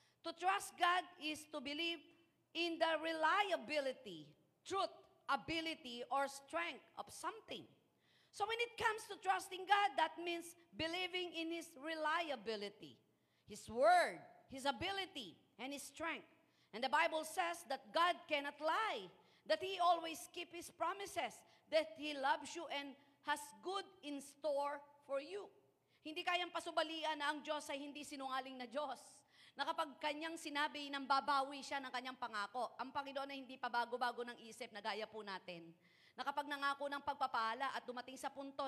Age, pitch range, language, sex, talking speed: 40-59, 260-335 Hz, Filipino, female, 155 wpm